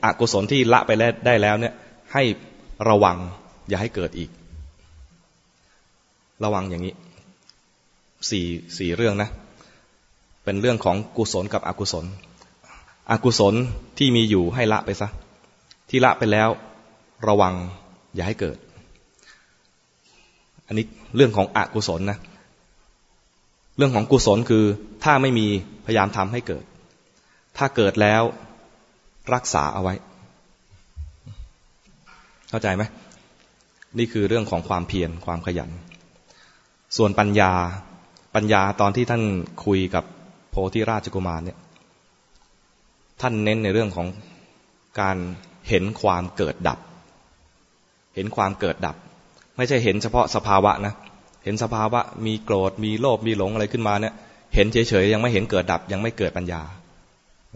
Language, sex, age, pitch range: English, male, 20-39, 90-110 Hz